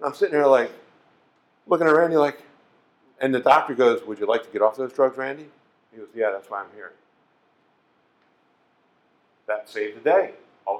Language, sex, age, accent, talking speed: English, male, 50-69, American, 190 wpm